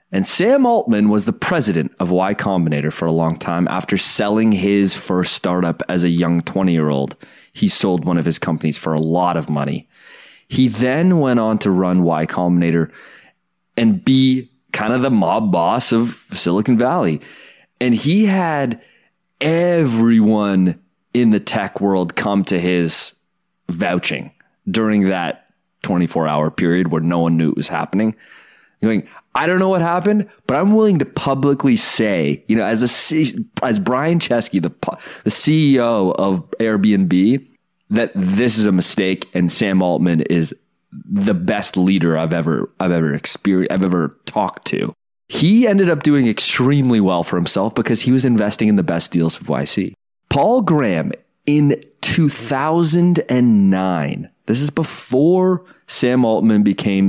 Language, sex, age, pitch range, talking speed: English, male, 30-49, 90-145 Hz, 155 wpm